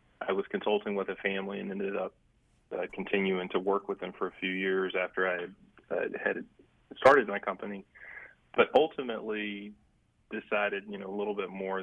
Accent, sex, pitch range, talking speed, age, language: American, male, 95-105 Hz, 180 wpm, 20-39, English